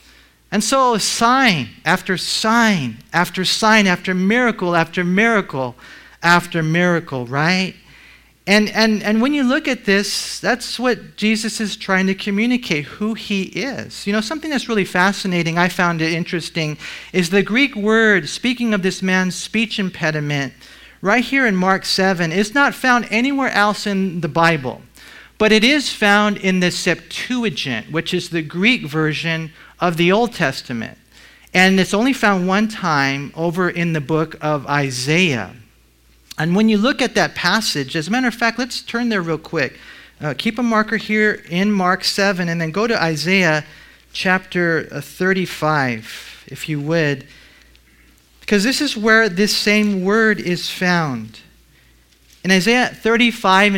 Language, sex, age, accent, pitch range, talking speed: English, male, 50-69, American, 165-220 Hz, 155 wpm